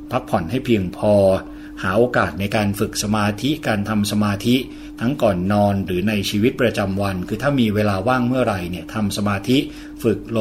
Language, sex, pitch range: Thai, male, 100-125 Hz